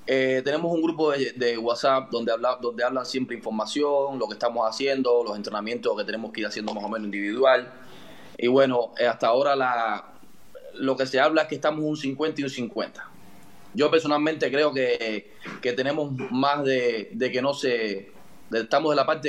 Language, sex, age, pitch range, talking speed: Spanish, male, 20-39, 120-145 Hz, 195 wpm